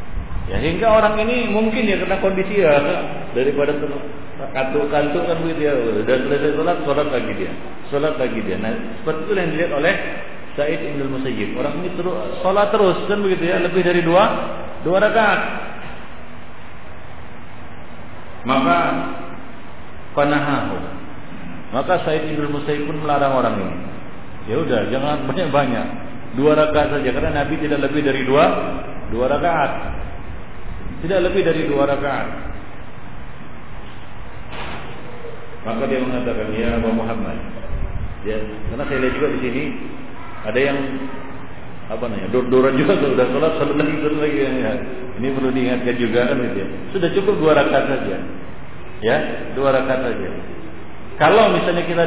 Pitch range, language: 120-165 Hz, Malay